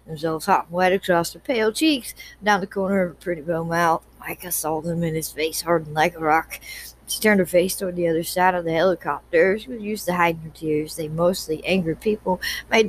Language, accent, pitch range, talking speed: English, American, 160-190 Hz, 230 wpm